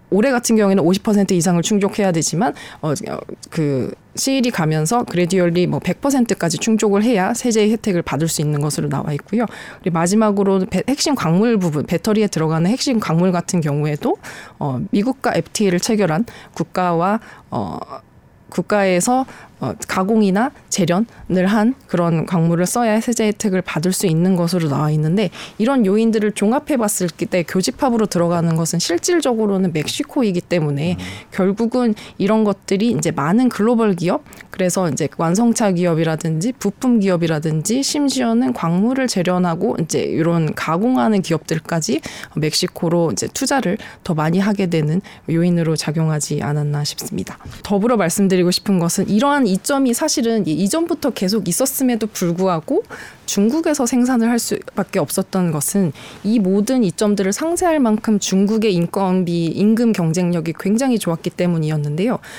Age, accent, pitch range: 20-39, native, 170-225 Hz